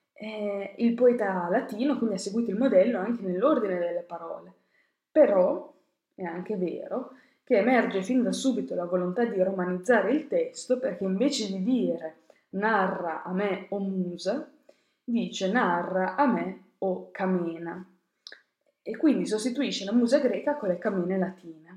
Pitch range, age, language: 185-260 Hz, 20-39, Italian